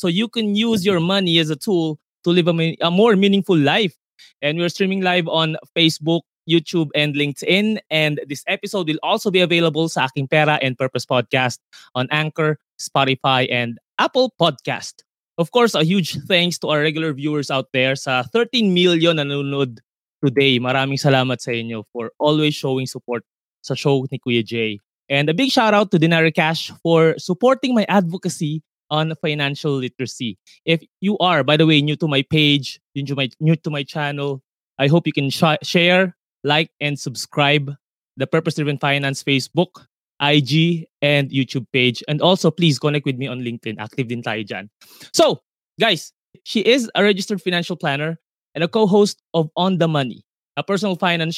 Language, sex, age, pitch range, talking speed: Filipino, male, 20-39, 140-180 Hz, 170 wpm